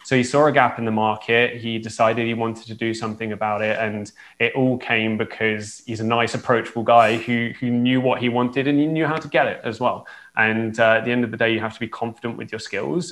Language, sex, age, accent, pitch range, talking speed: English, male, 20-39, British, 110-125 Hz, 265 wpm